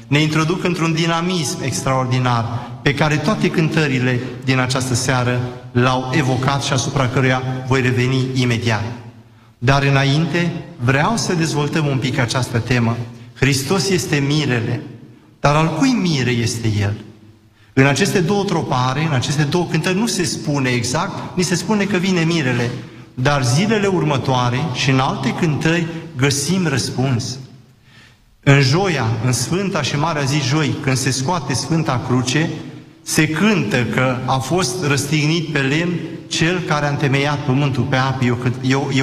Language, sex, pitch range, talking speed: Romanian, male, 125-160 Hz, 145 wpm